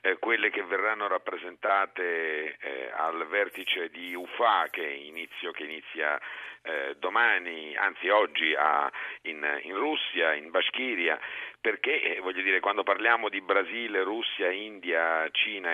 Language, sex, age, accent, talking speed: Italian, male, 50-69, native, 130 wpm